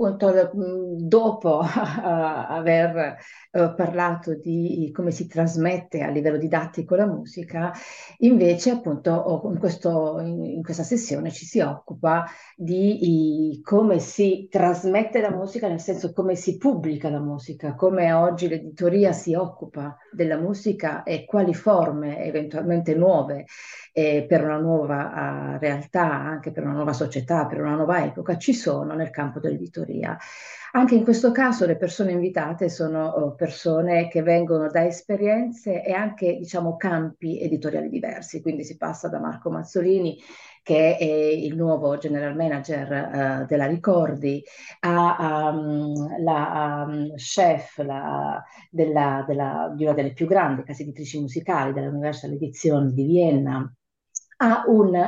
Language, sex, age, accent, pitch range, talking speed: Italian, female, 50-69, native, 150-185 Hz, 140 wpm